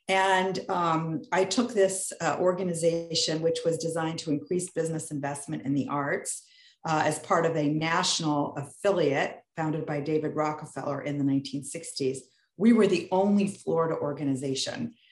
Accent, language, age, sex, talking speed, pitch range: American, English, 50-69, female, 145 wpm, 145-180 Hz